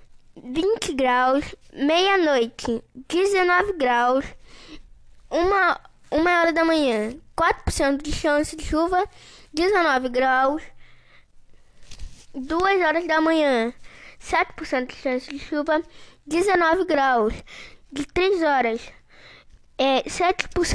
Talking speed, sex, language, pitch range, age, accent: 95 wpm, female, Portuguese, 275-335 Hz, 10-29, Brazilian